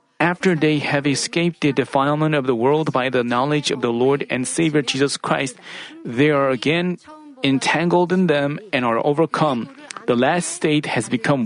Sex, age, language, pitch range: male, 40-59, Korean, 140-185 Hz